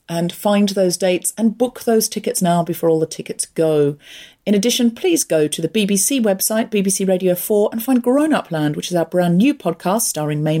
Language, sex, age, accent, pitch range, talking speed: English, female, 40-59, British, 175-240 Hz, 210 wpm